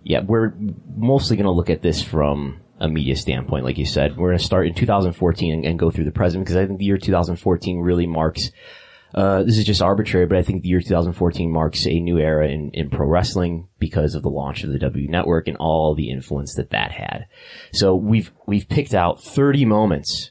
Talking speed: 225 wpm